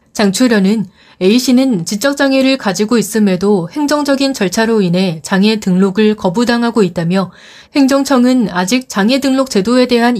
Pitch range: 190-245 Hz